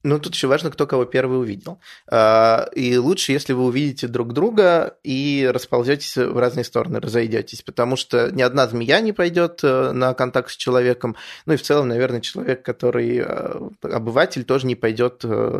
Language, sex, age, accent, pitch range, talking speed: Russian, male, 20-39, native, 120-140 Hz, 165 wpm